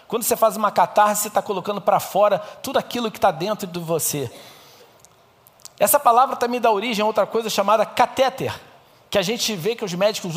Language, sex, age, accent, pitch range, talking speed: Portuguese, male, 50-69, Brazilian, 175-230 Hz, 195 wpm